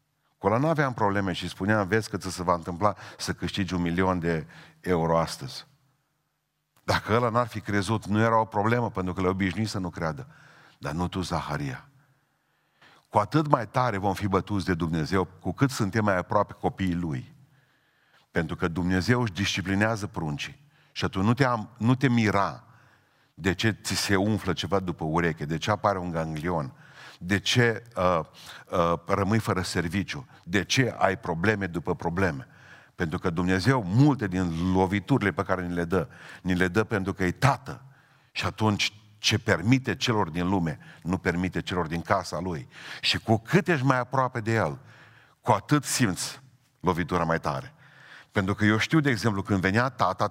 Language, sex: Romanian, male